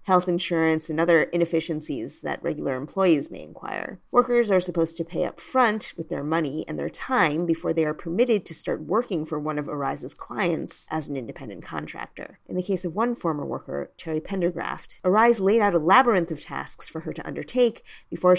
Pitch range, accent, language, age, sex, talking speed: 155-195 Hz, American, English, 30-49, female, 195 wpm